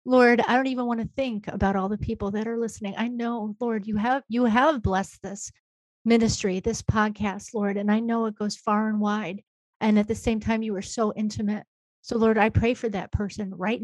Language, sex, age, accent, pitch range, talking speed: English, female, 40-59, American, 195-220 Hz, 225 wpm